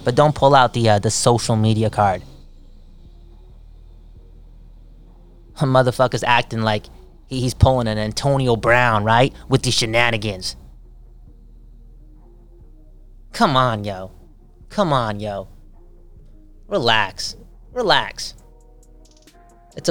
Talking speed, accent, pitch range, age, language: 95 wpm, American, 105-130 Hz, 20-39, English